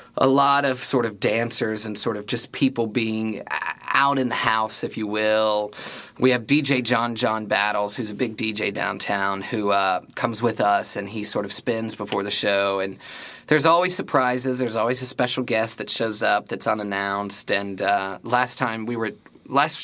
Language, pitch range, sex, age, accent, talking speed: English, 105-130 Hz, male, 30-49, American, 195 wpm